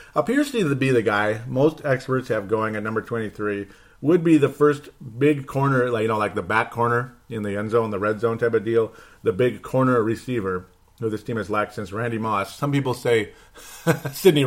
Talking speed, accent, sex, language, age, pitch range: 205 wpm, American, male, English, 40-59, 110-155 Hz